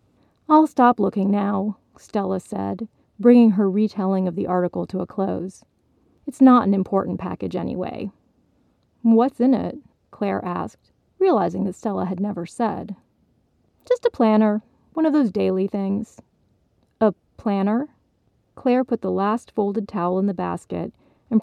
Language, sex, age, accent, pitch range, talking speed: English, female, 30-49, American, 195-255 Hz, 145 wpm